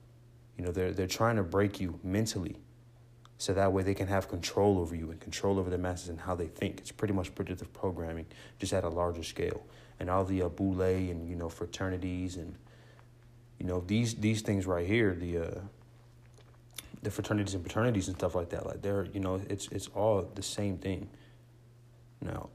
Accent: American